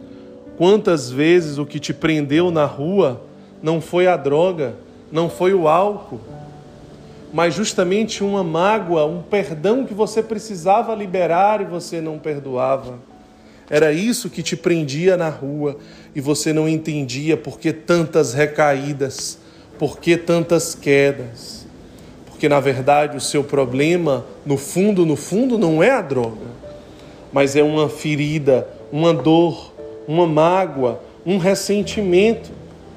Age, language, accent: 20-39, Portuguese, Brazilian